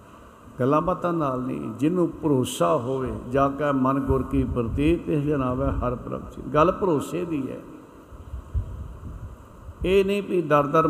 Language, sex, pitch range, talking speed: Punjabi, male, 125-150 Hz, 150 wpm